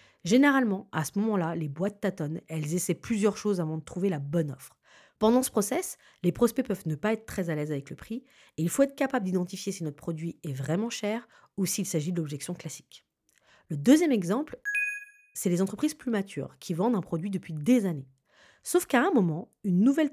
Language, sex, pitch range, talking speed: French, female, 160-235 Hz, 215 wpm